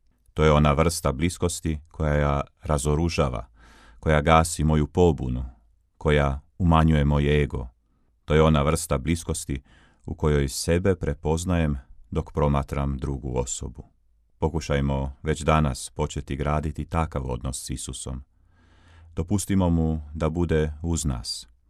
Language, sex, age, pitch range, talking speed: Croatian, male, 40-59, 70-85 Hz, 120 wpm